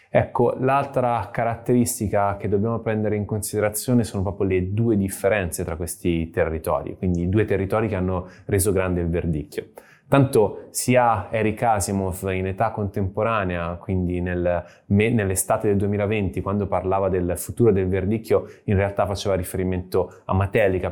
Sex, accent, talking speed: male, native, 145 wpm